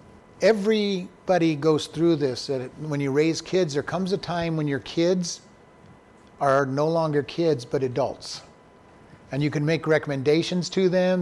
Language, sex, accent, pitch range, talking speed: English, male, American, 145-180 Hz, 150 wpm